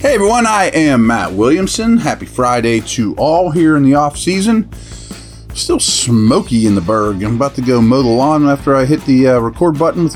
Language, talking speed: English, 200 wpm